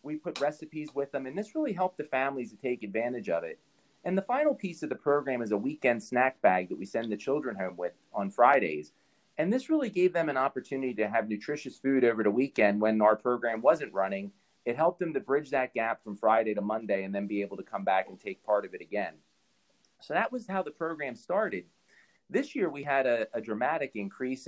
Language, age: English, 30-49